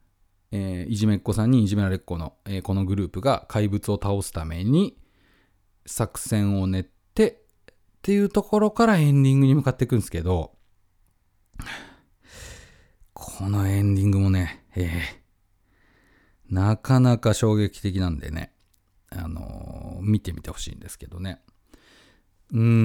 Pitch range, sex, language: 95-130 Hz, male, Japanese